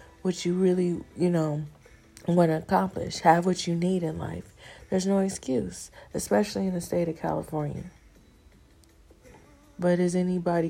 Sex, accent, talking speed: female, American, 145 wpm